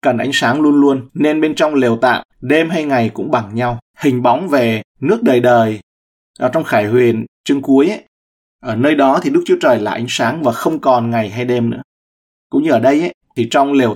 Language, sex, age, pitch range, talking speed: Vietnamese, male, 20-39, 110-140 Hz, 235 wpm